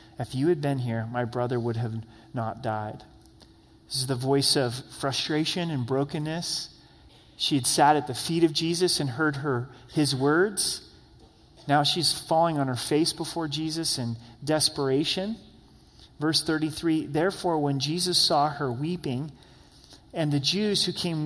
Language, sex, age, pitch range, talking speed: English, male, 30-49, 135-170 Hz, 155 wpm